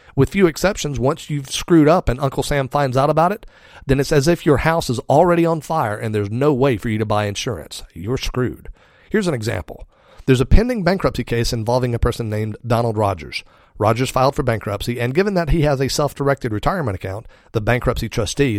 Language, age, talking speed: English, 40-59, 210 wpm